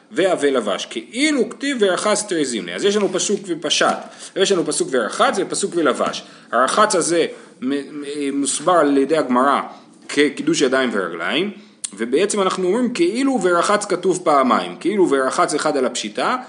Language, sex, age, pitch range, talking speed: Hebrew, male, 30-49, 140-220 Hz, 155 wpm